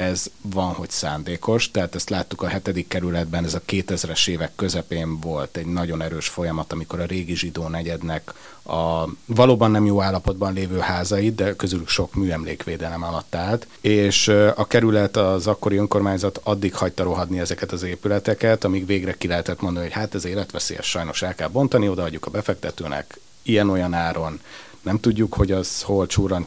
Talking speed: 170 wpm